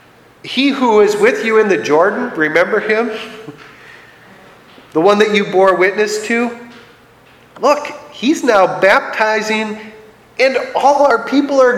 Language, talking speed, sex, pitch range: English, 130 wpm, male, 160-235 Hz